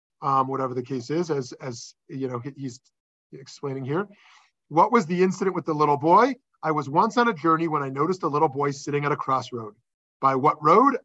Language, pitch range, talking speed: English, 135-190 Hz, 210 wpm